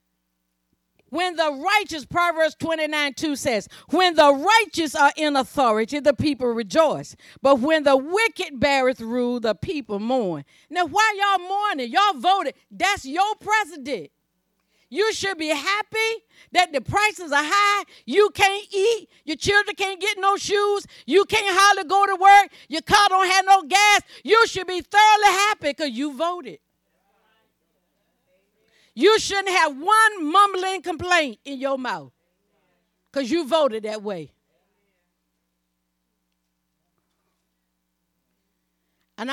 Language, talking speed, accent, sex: English, 135 wpm, American, female